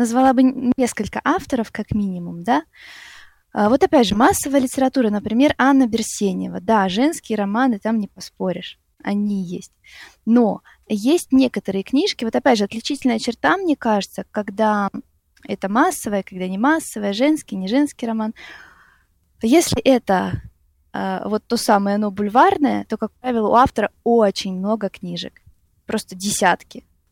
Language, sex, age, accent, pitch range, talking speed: Russian, female, 20-39, native, 195-260 Hz, 135 wpm